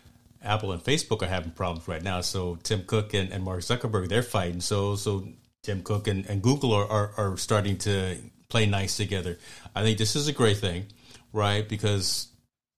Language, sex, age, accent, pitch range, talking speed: English, male, 30-49, American, 100-115 Hz, 195 wpm